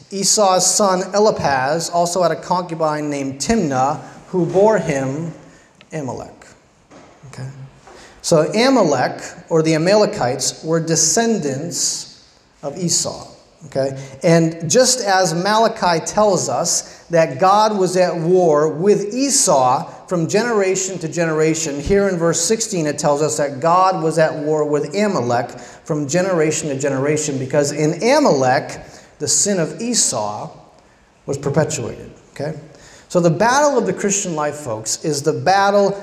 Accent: American